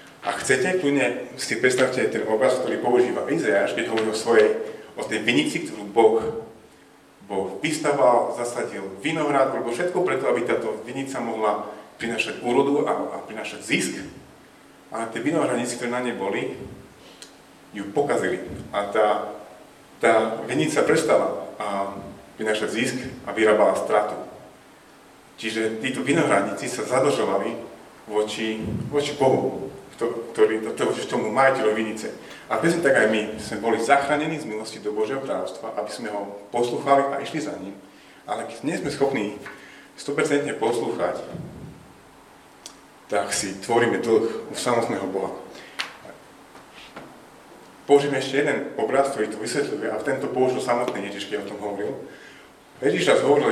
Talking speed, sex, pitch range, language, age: 140 wpm, male, 105-140 Hz, Slovak, 40-59